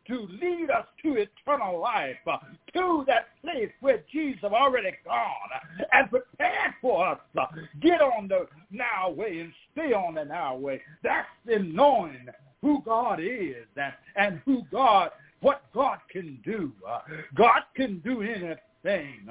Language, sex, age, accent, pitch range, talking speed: English, male, 60-79, American, 200-300 Hz, 155 wpm